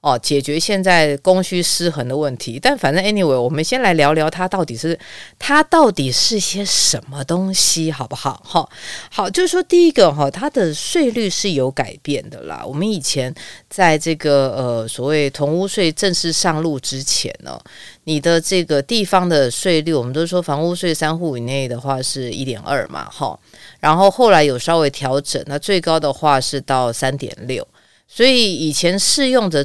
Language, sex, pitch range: Chinese, female, 140-190 Hz